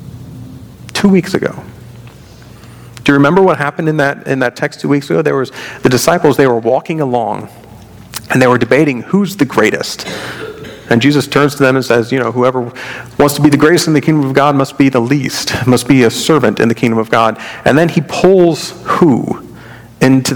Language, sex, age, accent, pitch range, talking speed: English, male, 40-59, American, 120-155 Hz, 205 wpm